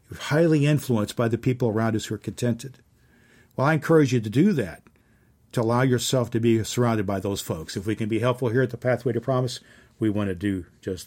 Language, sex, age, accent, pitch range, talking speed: English, male, 50-69, American, 105-125 Hz, 230 wpm